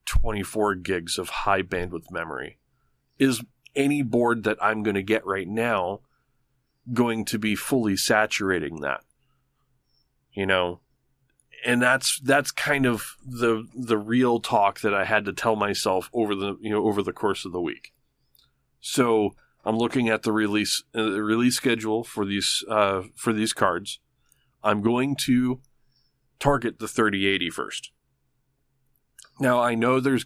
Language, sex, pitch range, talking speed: English, male, 105-130 Hz, 150 wpm